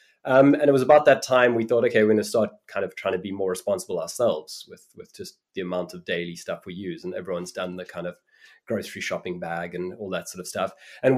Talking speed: 260 wpm